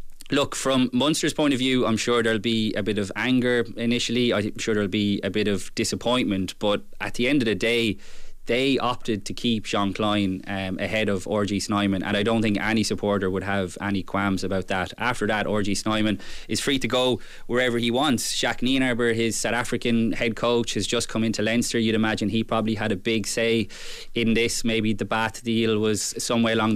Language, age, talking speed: English, 20-39, 210 wpm